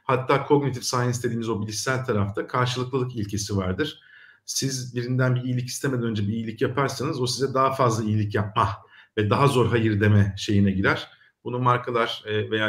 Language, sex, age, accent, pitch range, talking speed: Turkish, male, 50-69, native, 105-140 Hz, 165 wpm